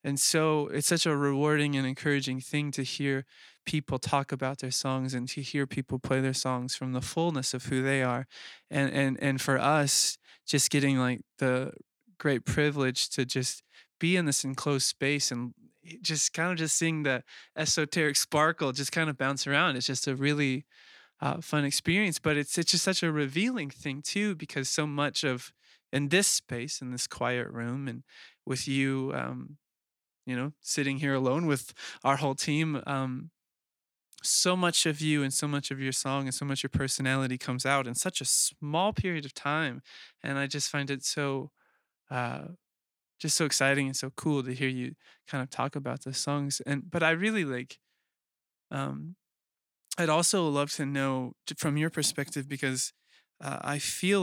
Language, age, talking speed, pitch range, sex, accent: English, 20-39, 185 wpm, 130-150 Hz, male, American